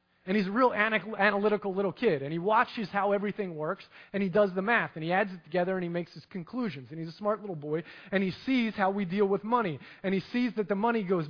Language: English